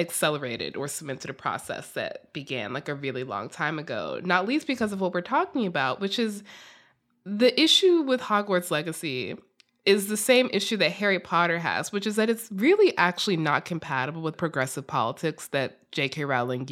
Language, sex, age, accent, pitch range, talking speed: English, female, 20-39, American, 155-240 Hz, 180 wpm